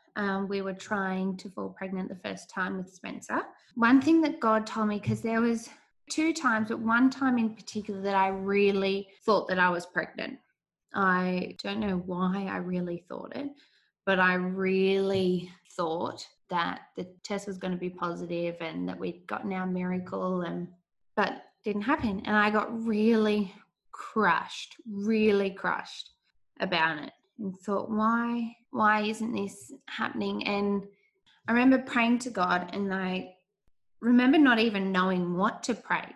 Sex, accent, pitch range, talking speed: female, Australian, 185-225 Hz, 160 wpm